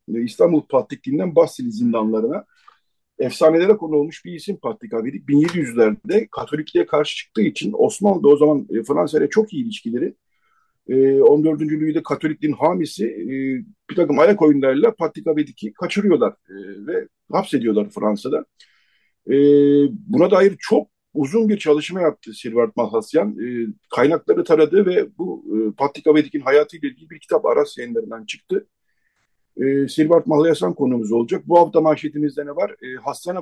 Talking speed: 125 wpm